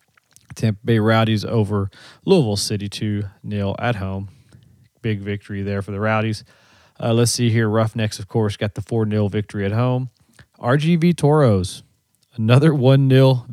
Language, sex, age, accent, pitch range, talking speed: English, male, 30-49, American, 100-125 Hz, 140 wpm